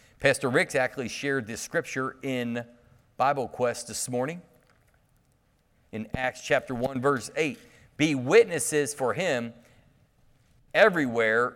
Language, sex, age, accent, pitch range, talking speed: English, male, 40-59, American, 120-145 Hz, 115 wpm